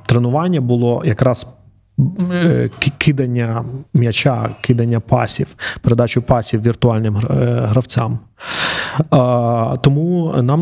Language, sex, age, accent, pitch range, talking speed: Ukrainian, male, 30-49, native, 115-130 Hz, 75 wpm